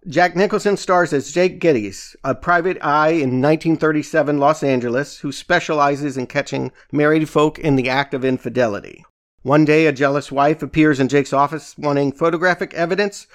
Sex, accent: male, American